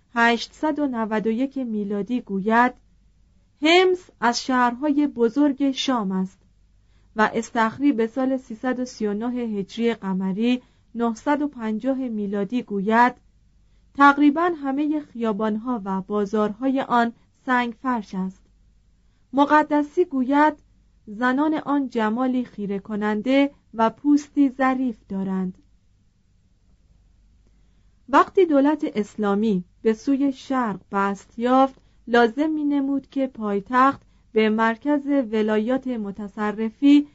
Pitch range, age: 205-275 Hz, 40-59